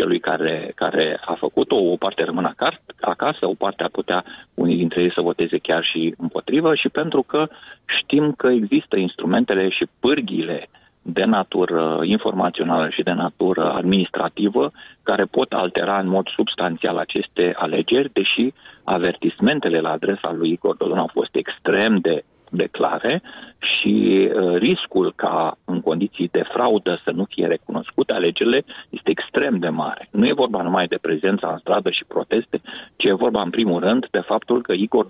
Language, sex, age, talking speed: Romanian, male, 30-49, 160 wpm